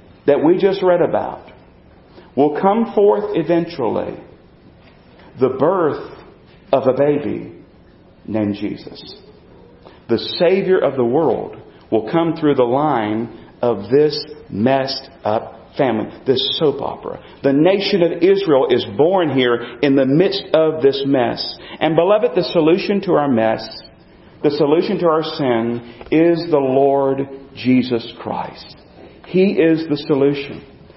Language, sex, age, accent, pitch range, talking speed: English, male, 40-59, American, 140-185 Hz, 130 wpm